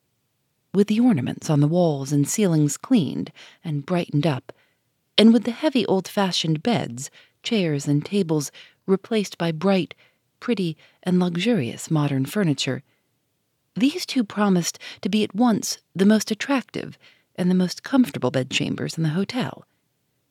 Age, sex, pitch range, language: 40-59, female, 155-220 Hz, English